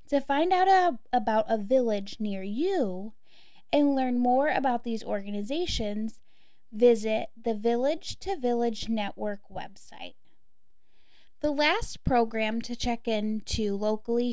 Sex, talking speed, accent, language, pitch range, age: female, 115 wpm, American, English, 220-290 Hz, 10-29